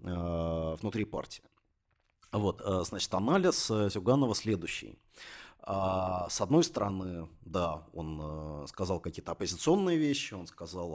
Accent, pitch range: native, 90-115 Hz